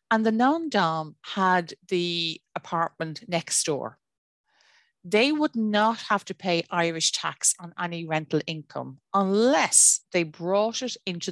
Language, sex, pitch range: English, female, 160-220 Hz